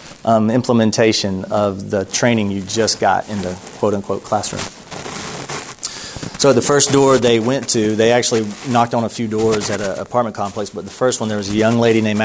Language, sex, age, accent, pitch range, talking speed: English, male, 30-49, American, 105-120 Hz, 195 wpm